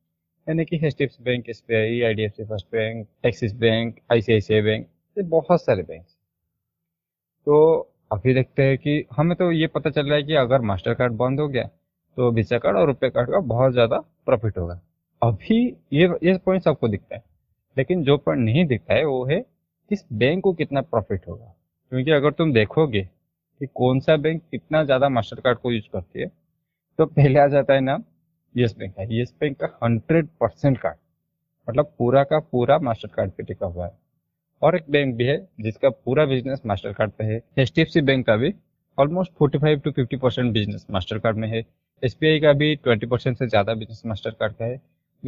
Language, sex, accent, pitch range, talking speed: Hindi, male, native, 110-155 Hz, 120 wpm